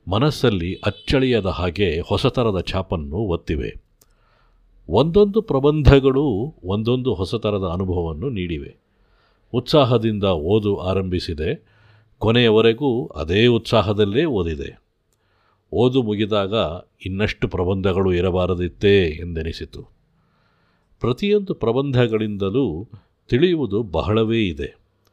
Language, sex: Kannada, male